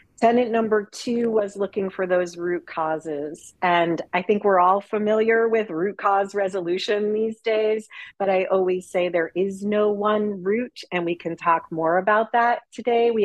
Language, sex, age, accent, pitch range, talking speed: English, female, 40-59, American, 175-225 Hz, 175 wpm